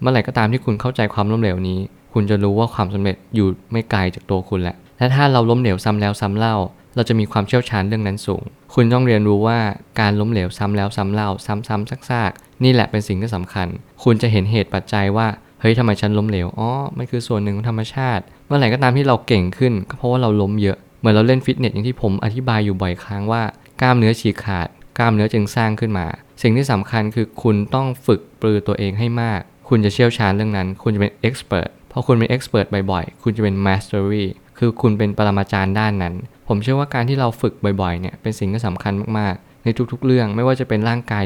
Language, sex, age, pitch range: Thai, male, 20-39, 100-120 Hz